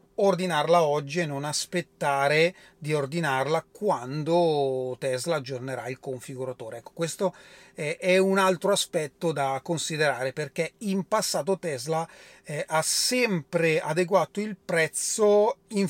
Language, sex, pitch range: Italian, male, 150-200 Hz